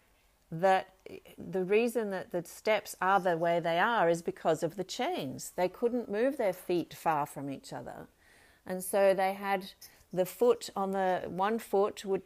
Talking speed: 175 wpm